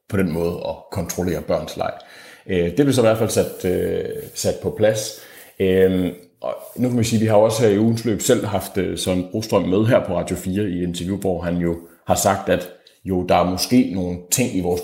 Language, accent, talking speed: Danish, native, 220 wpm